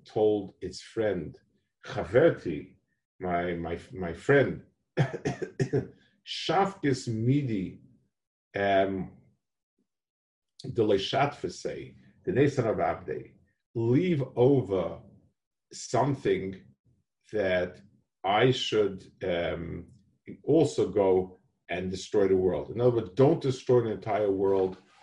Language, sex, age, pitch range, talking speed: English, male, 50-69, 95-125 Hz, 85 wpm